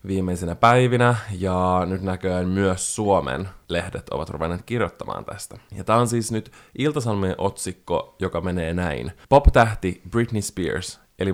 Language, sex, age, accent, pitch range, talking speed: Finnish, male, 20-39, native, 85-100 Hz, 140 wpm